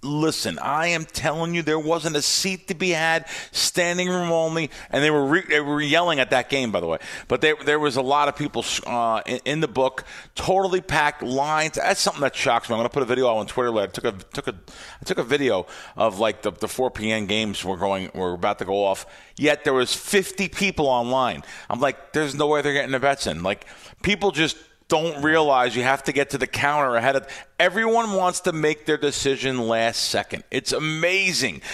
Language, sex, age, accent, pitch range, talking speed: English, male, 40-59, American, 115-150 Hz, 245 wpm